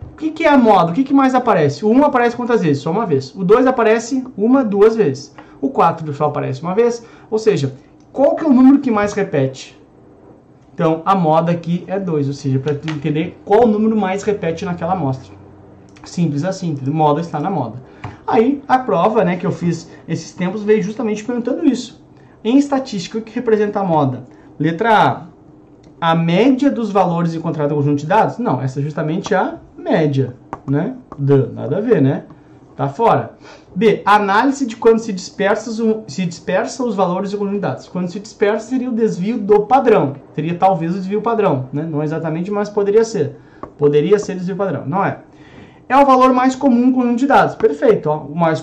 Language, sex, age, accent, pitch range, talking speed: Portuguese, male, 30-49, Brazilian, 150-225 Hz, 195 wpm